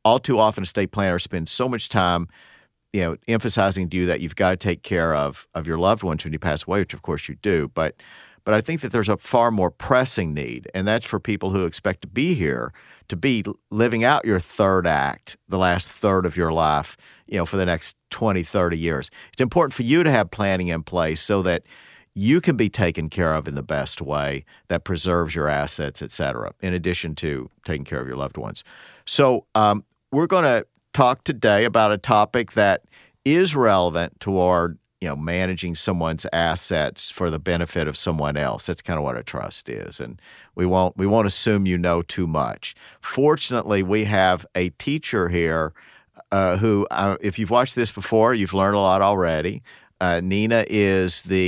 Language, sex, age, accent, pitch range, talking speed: English, male, 50-69, American, 85-105 Hz, 205 wpm